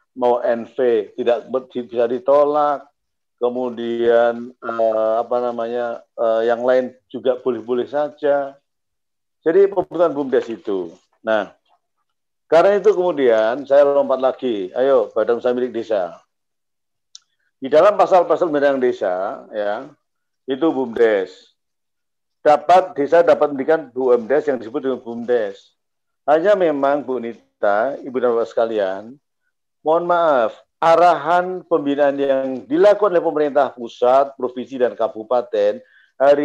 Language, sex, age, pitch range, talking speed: Indonesian, male, 50-69, 125-165 Hz, 110 wpm